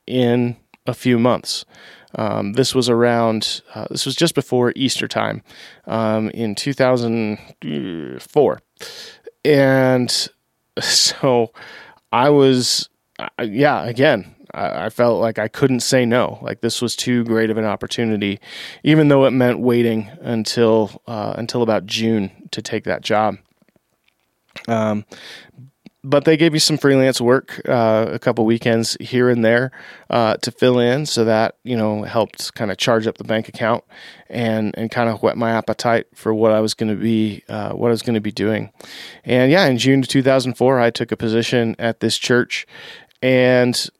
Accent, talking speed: American, 170 wpm